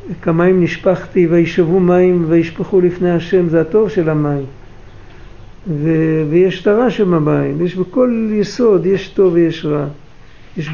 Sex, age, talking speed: male, 60-79, 135 wpm